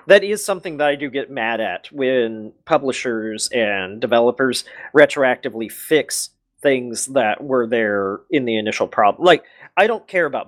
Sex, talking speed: male, 160 wpm